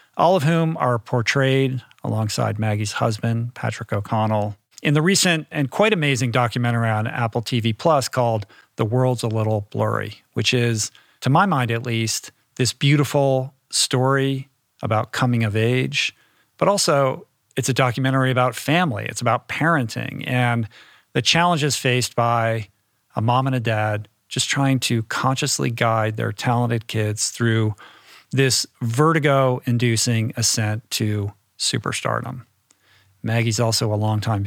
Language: Russian